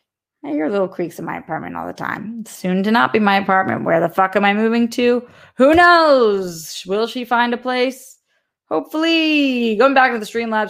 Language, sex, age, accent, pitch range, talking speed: English, female, 20-39, American, 180-240 Hz, 200 wpm